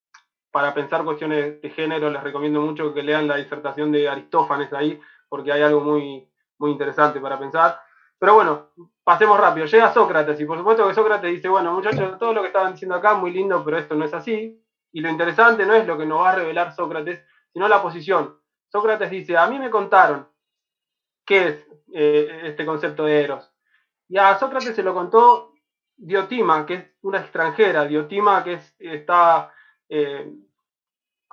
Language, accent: Spanish, Argentinian